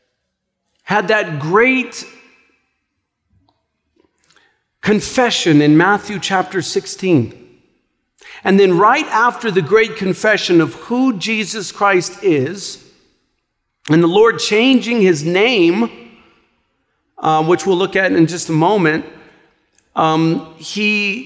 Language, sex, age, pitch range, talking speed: English, male, 50-69, 180-235 Hz, 105 wpm